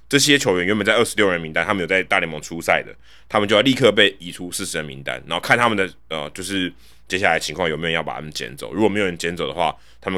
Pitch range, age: 80-110 Hz, 20-39